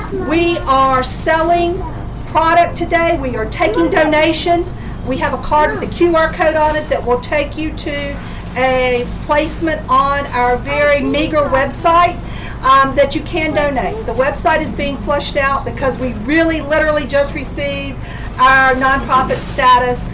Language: English